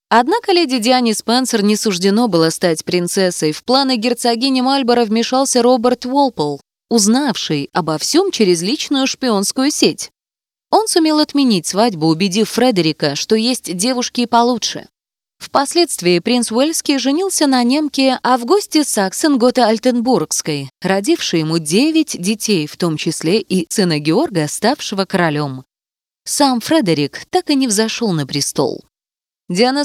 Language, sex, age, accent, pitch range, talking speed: Russian, female, 20-39, native, 180-275 Hz, 135 wpm